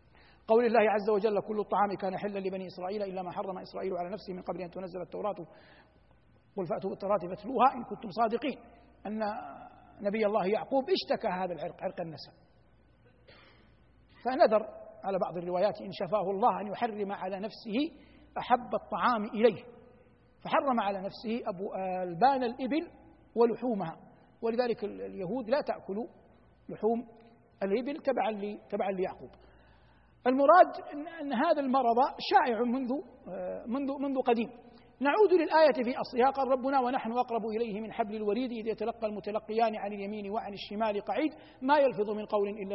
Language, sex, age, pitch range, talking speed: Arabic, male, 60-79, 195-255 Hz, 140 wpm